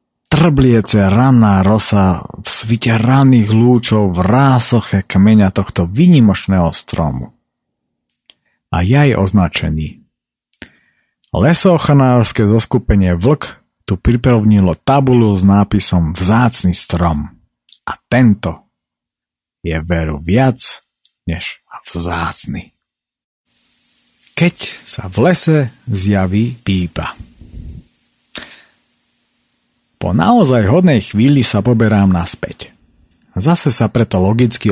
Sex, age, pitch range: male, 50-69, 95-120 Hz